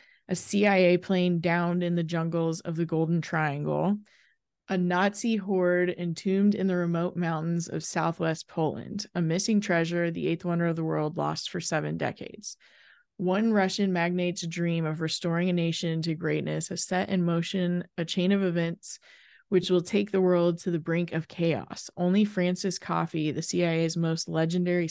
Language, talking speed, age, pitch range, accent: English, 170 wpm, 20-39, 160-185 Hz, American